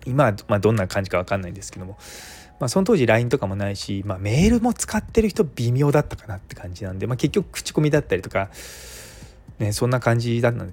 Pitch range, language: 95-155 Hz, Japanese